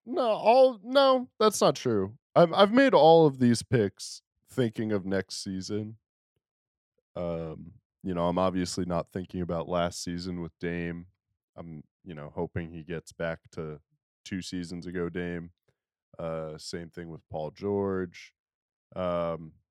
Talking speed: 145 wpm